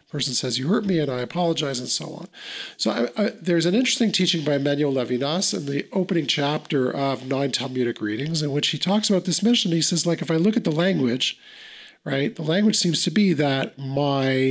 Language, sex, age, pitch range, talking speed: Hebrew, male, 50-69, 150-195 Hz, 215 wpm